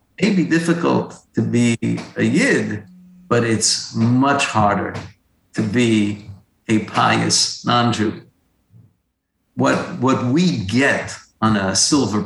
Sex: male